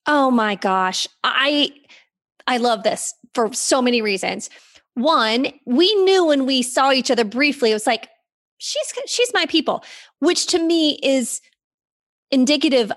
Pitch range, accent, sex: 220-280 Hz, American, female